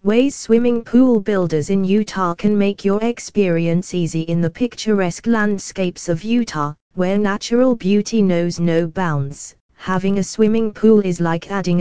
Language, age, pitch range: English, 20-39, 175-215 Hz